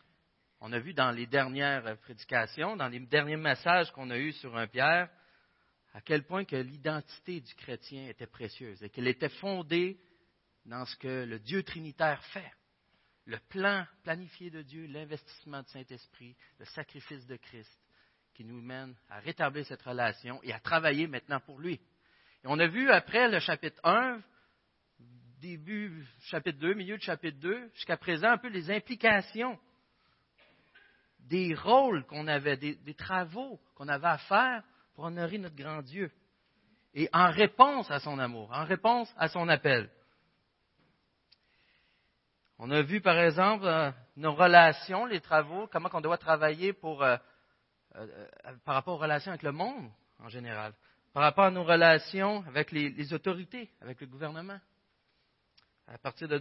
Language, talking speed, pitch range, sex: French, 160 wpm, 130-180 Hz, male